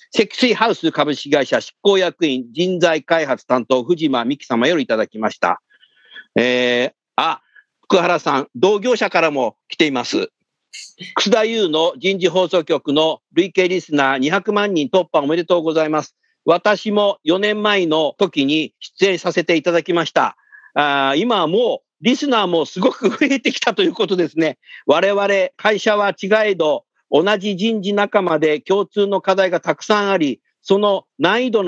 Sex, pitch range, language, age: male, 160-210 Hz, Japanese, 50-69